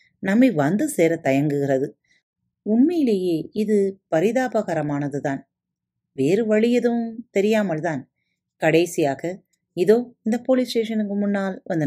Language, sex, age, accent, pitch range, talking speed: Tamil, female, 30-49, native, 155-225 Hz, 100 wpm